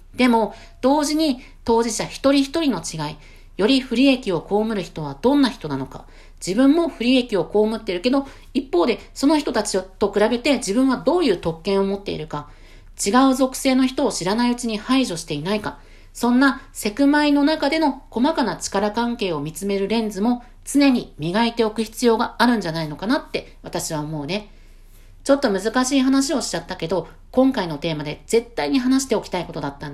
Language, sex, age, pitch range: Japanese, female, 50-69, 165-255 Hz